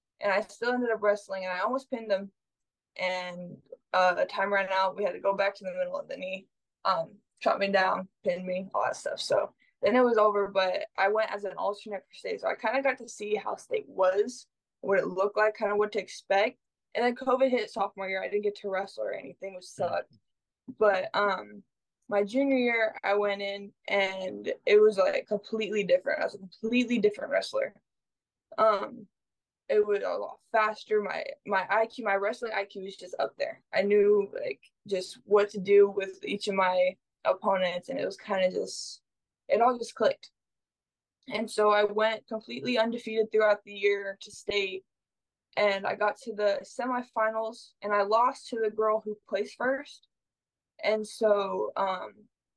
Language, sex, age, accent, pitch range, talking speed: English, female, 10-29, American, 195-245 Hz, 195 wpm